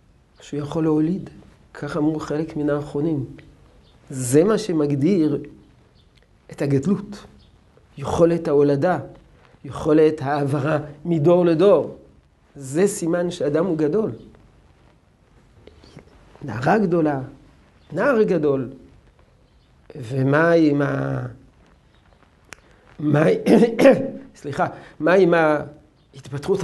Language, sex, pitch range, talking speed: Hebrew, male, 140-170 Hz, 75 wpm